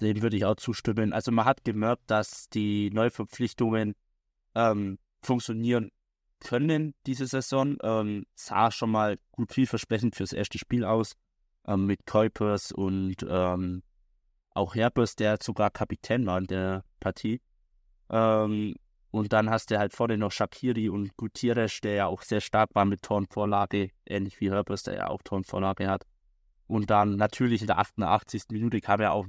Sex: male